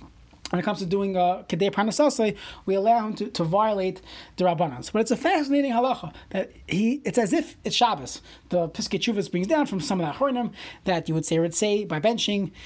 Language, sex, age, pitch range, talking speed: English, male, 30-49, 180-240 Hz, 210 wpm